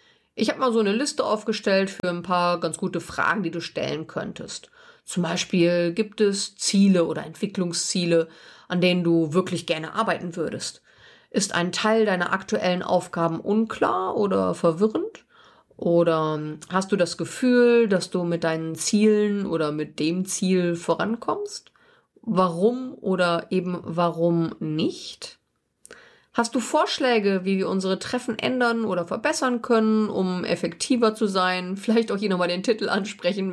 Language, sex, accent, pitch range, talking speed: German, female, German, 170-225 Hz, 145 wpm